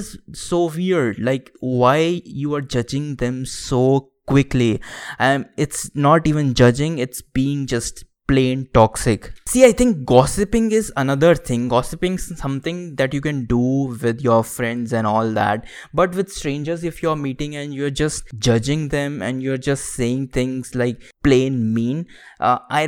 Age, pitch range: 20-39, 115-145 Hz